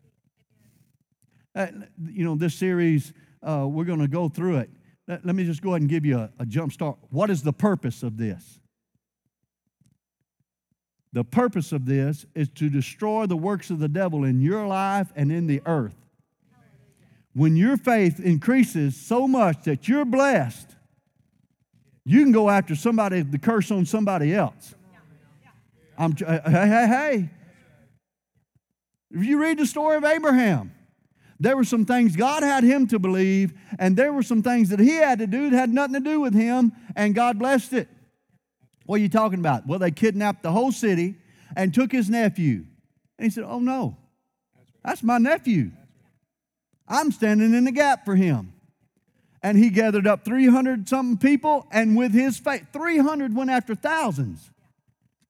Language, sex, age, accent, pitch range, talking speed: English, male, 50-69, American, 150-240 Hz, 165 wpm